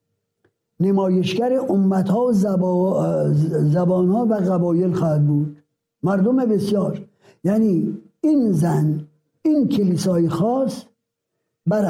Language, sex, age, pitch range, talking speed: Persian, male, 60-79, 170-225 Hz, 85 wpm